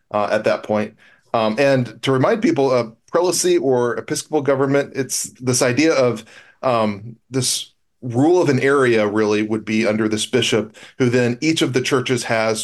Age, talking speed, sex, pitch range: 40-59, 175 wpm, male, 110-135 Hz